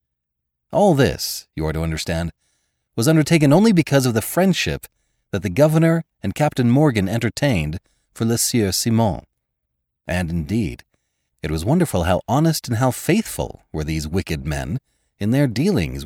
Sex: male